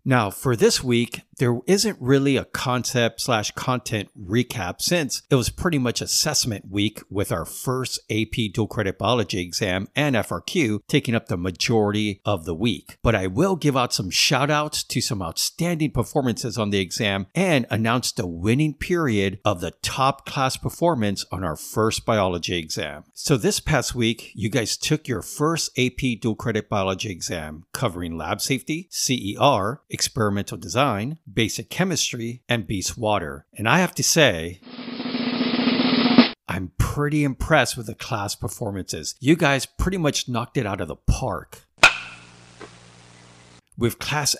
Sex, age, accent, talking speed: male, 50-69, American, 155 wpm